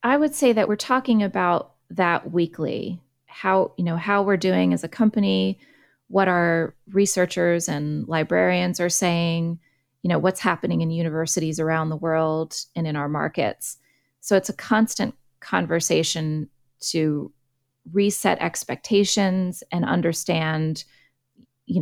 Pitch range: 155-190 Hz